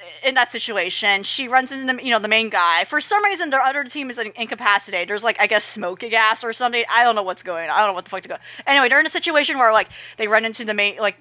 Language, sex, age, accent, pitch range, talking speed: English, female, 30-49, American, 200-265 Hz, 290 wpm